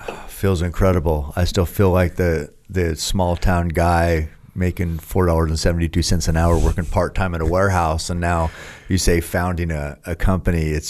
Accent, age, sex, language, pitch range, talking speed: American, 40-59, male, English, 85-105 Hz, 195 wpm